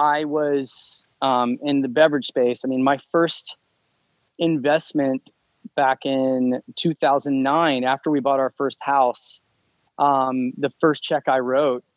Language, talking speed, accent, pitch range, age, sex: English, 135 wpm, American, 130-150 Hz, 20-39, male